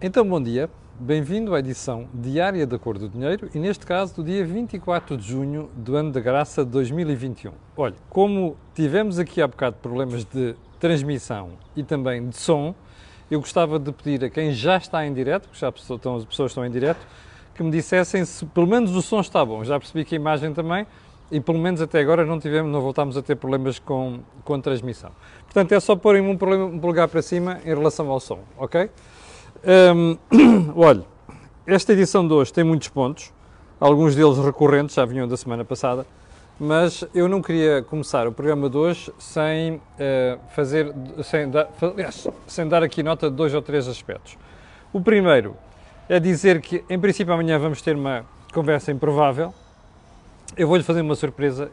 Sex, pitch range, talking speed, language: male, 130-170 Hz, 175 wpm, Portuguese